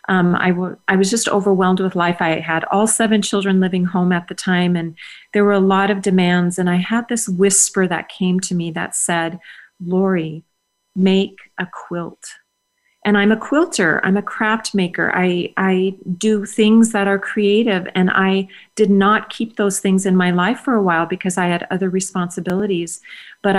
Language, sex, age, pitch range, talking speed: English, female, 40-59, 180-205 Hz, 190 wpm